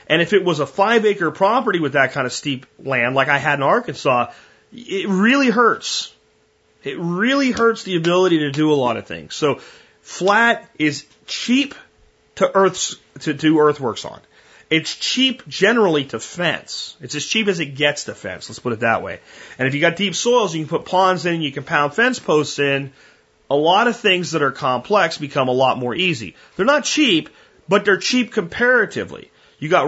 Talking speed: 195 wpm